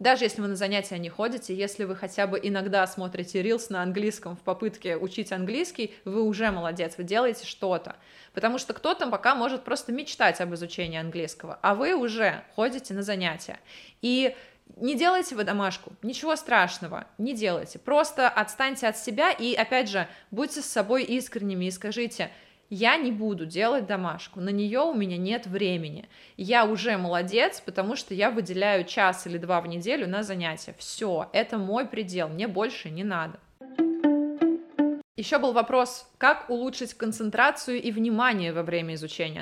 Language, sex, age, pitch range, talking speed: Russian, female, 20-39, 190-245 Hz, 165 wpm